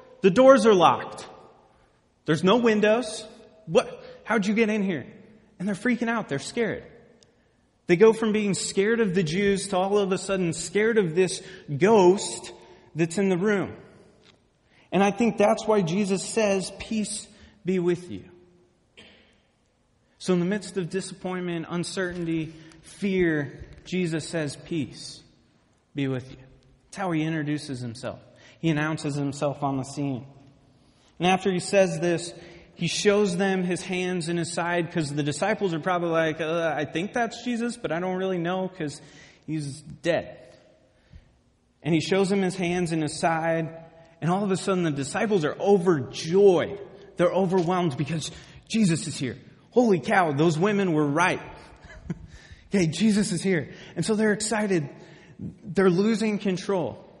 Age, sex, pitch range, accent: 30-49, male, 160-200 Hz, American